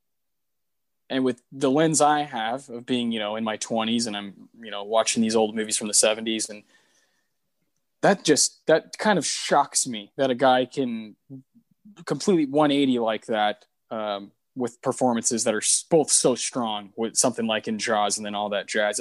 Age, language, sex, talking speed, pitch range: 20-39, English, male, 185 wpm, 110-140 Hz